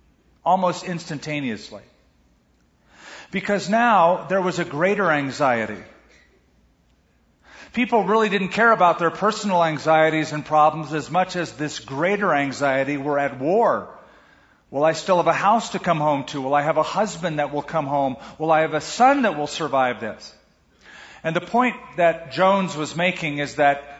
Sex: male